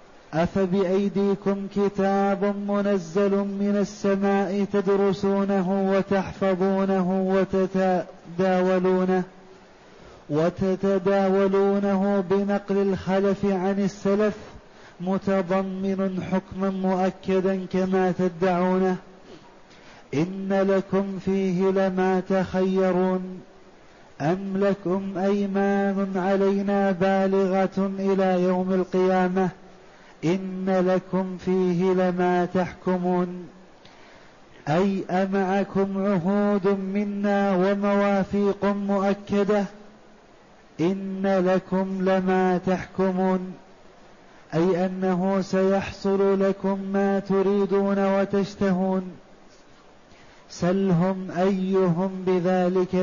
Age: 30-49